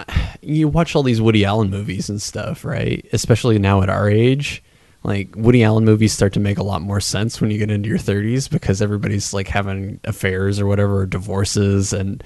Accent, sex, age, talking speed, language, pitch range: American, male, 20-39, 200 wpm, English, 100-115 Hz